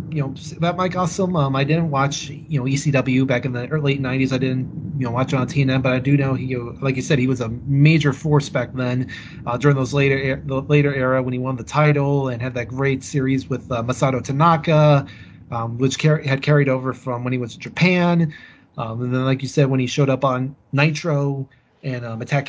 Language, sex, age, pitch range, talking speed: English, male, 30-49, 130-150 Hz, 245 wpm